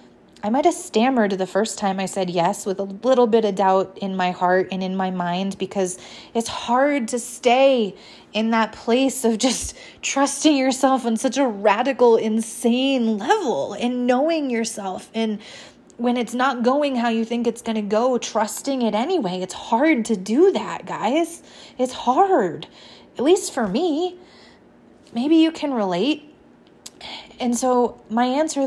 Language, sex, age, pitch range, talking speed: English, female, 20-39, 200-245 Hz, 165 wpm